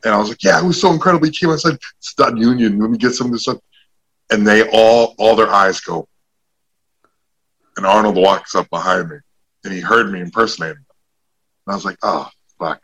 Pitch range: 90-120 Hz